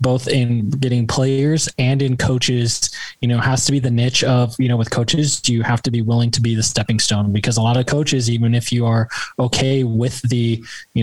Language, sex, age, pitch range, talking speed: English, male, 20-39, 115-125 Hz, 235 wpm